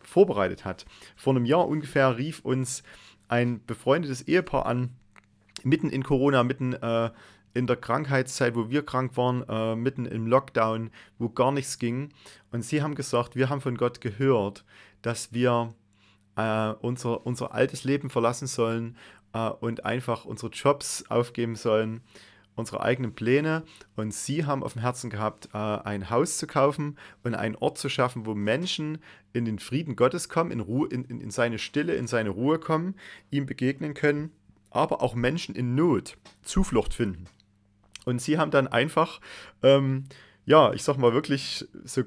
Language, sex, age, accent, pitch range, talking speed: German, male, 30-49, German, 115-140 Hz, 165 wpm